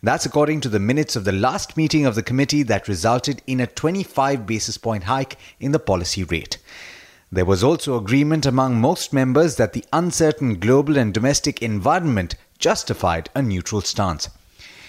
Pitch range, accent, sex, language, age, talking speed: 105-140 Hz, Indian, male, English, 30-49, 170 wpm